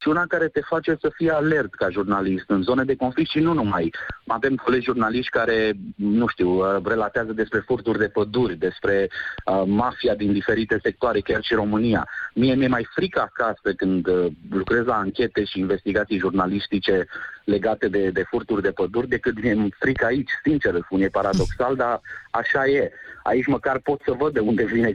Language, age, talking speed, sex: Romanian, 30-49, 180 wpm, male